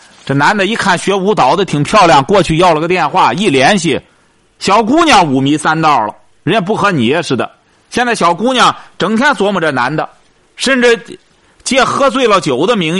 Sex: male